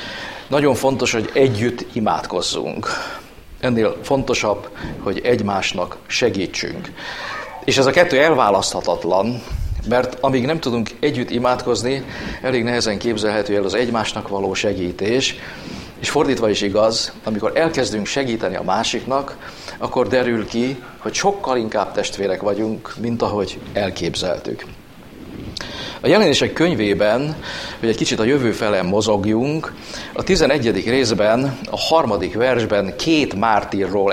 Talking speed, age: 120 wpm, 50-69